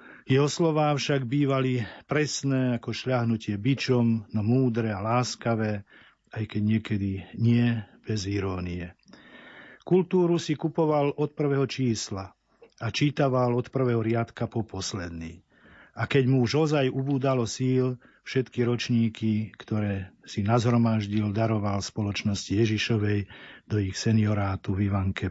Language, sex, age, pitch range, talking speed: Slovak, male, 50-69, 110-130 Hz, 120 wpm